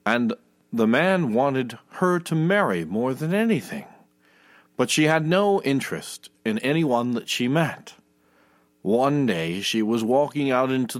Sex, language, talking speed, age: male, English, 145 wpm, 50-69